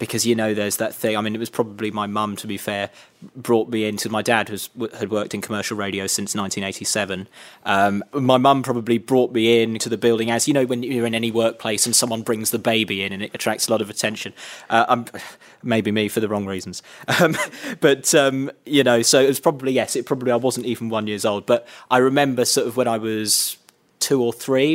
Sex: male